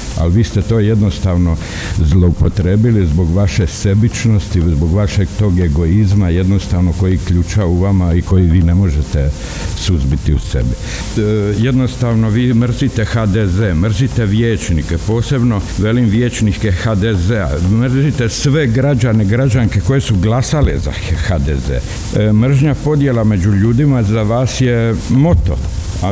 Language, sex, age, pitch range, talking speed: Croatian, male, 60-79, 95-120 Hz, 130 wpm